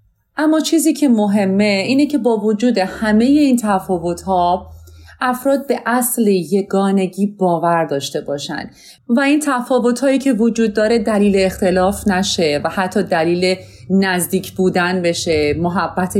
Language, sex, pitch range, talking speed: Persian, female, 165-210 Hz, 125 wpm